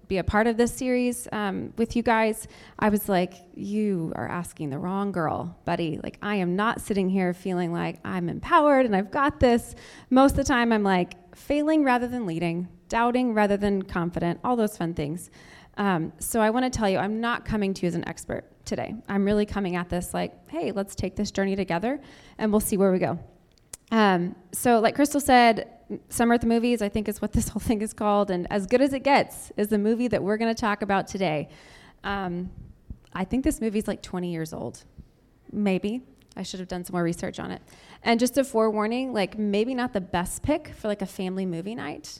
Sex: female